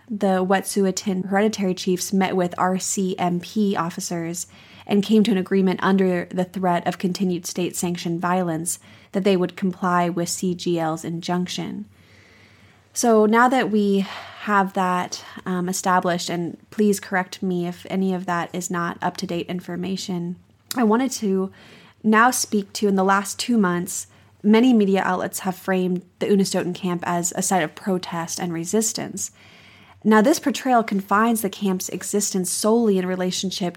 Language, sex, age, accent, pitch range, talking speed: English, female, 20-39, American, 175-205 Hz, 145 wpm